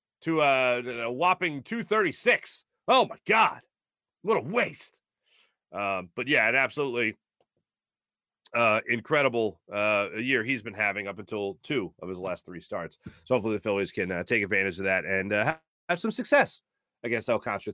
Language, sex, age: English, male, 30-49